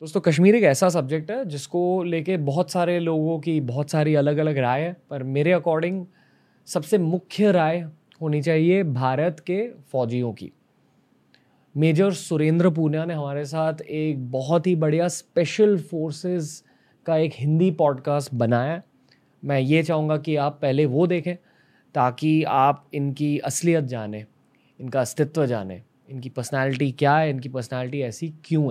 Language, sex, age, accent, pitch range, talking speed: Hindi, male, 20-39, native, 130-165 Hz, 150 wpm